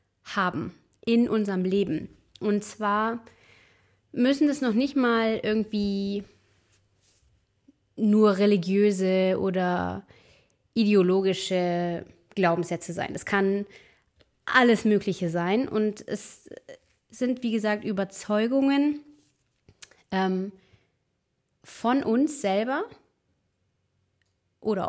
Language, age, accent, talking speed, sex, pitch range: German, 20-39, German, 80 wpm, female, 185-235 Hz